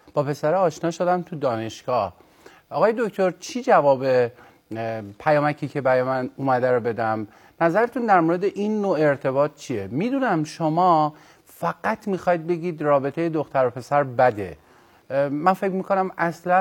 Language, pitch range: Persian, 125-165 Hz